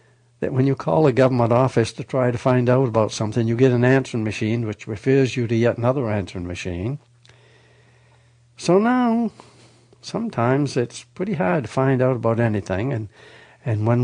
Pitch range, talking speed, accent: 105-130 Hz, 175 wpm, American